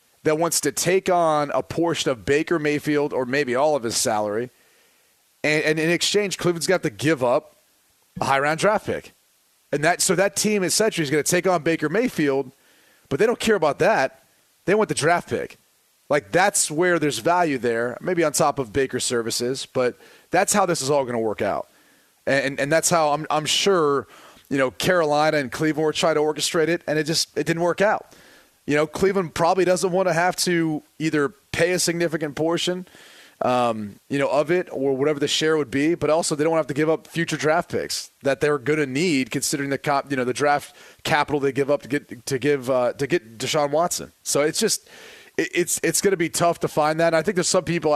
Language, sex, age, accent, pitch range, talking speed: English, male, 30-49, American, 135-170 Hz, 225 wpm